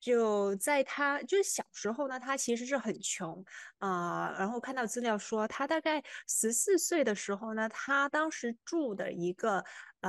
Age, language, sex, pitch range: 20-39, Chinese, female, 190-270 Hz